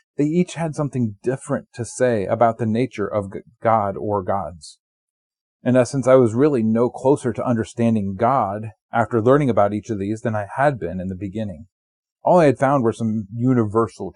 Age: 40-59